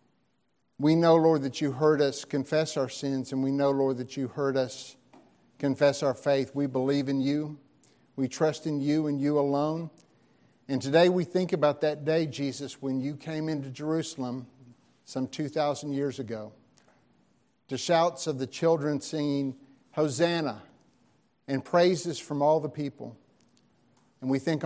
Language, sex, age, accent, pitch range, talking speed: English, male, 50-69, American, 135-165 Hz, 160 wpm